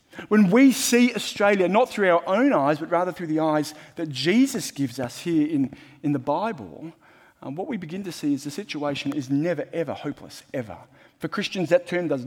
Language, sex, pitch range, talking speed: English, male, 145-195 Hz, 205 wpm